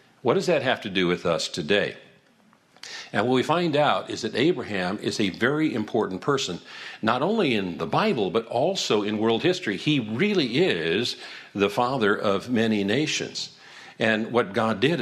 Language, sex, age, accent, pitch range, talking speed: English, male, 50-69, American, 105-135 Hz, 175 wpm